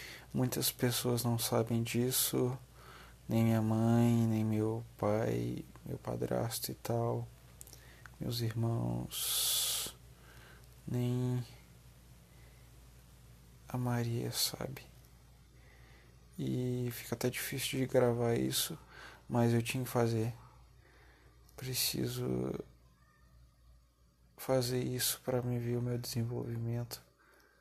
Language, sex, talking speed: Portuguese, male, 90 wpm